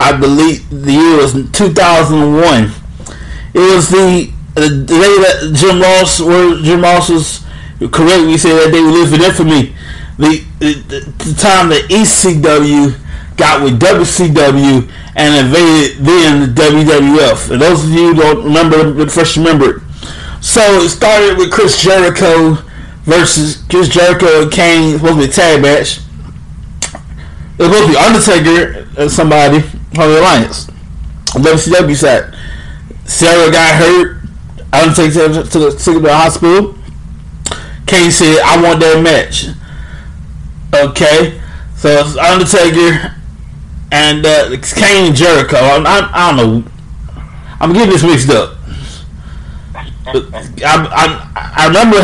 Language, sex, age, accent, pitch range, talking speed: English, male, 30-49, American, 135-175 Hz, 140 wpm